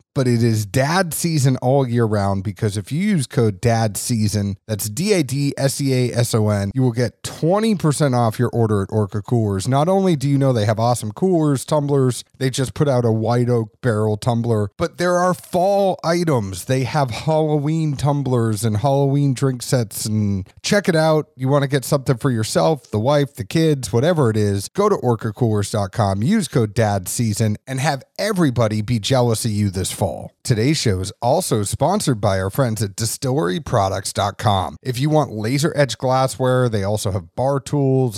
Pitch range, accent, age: 110-145 Hz, American, 30-49